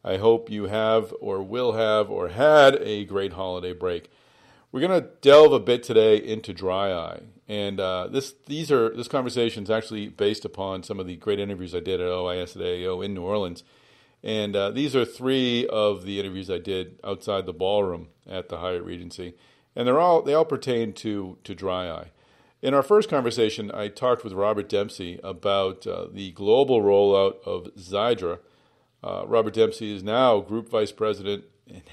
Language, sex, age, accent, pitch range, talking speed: English, male, 40-59, American, 95-115 Hz, 185 wpm